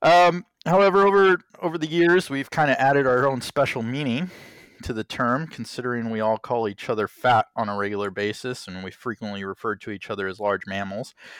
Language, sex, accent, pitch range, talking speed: English, male, American, 110-150 Hz, 200 wpm